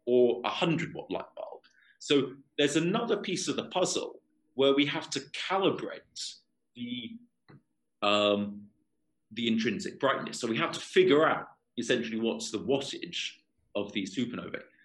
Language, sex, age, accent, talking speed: English, male, 40-59, British, 145 wpm